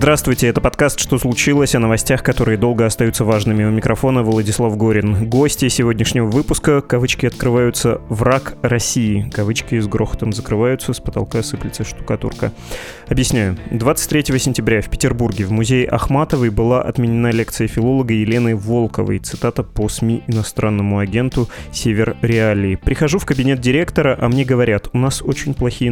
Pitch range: 110-130 Hz